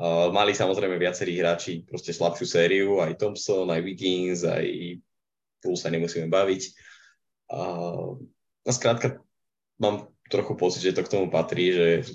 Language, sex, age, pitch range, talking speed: Slovak, male, 20-39, 85-95 Hz, 150 wpm